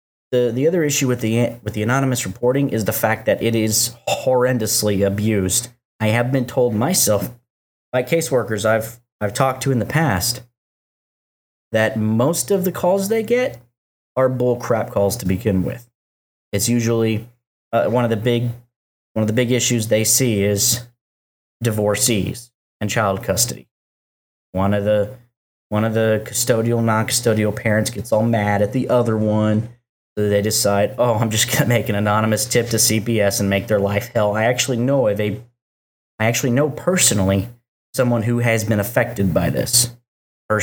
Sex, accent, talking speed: male, American, 170 wpm